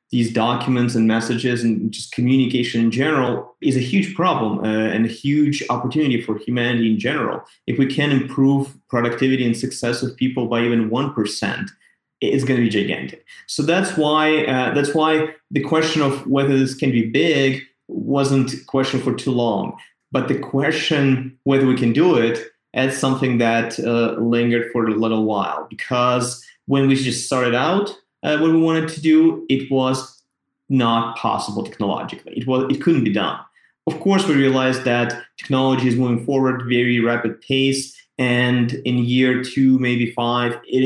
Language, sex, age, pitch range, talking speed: English, male, 30-49, 120-135 Hz, 175 wpm